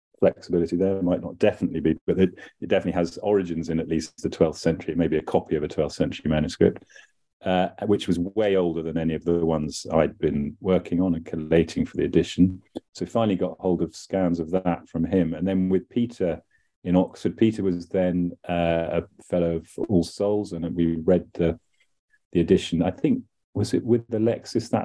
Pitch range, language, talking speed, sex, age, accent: 85-100 Hz, English, 205 wpm, male, 30-49, British